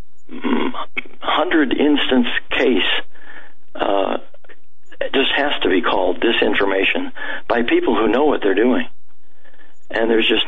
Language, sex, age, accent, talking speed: English, male, 60-79, American, 110 wpm